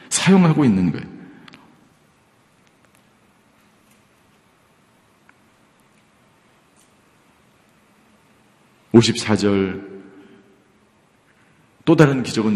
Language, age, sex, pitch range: Korean, 40-59, male, 100-135 Hz